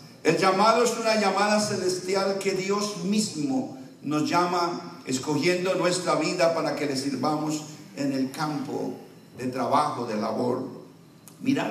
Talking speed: 135 wpm